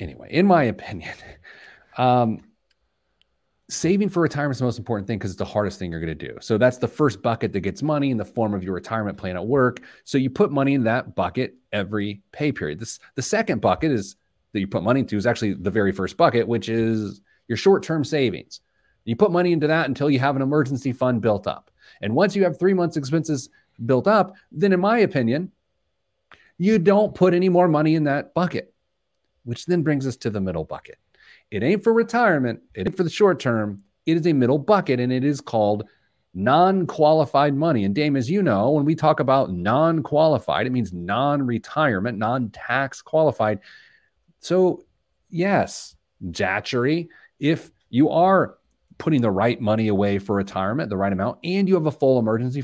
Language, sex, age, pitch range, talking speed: English, male, 30-49, 110-170 Hz, 195 wpm